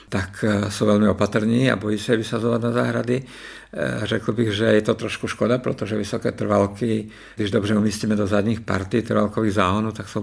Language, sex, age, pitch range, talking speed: Czech, male, 50-69, 100-115 Hz, 180 wpm